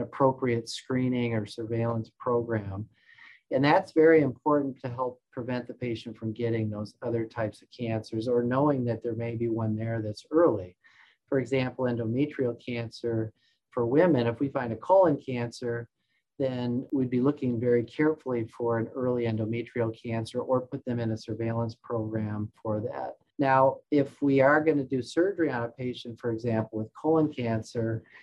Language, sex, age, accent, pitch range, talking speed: English, male, 40-59, American, 115-130 Hz, 170 wpm